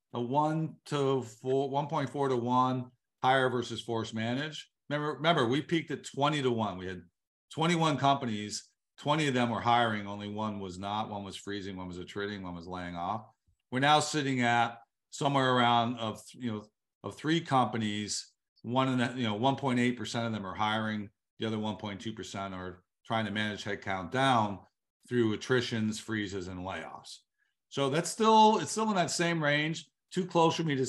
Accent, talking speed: American, 175 wpm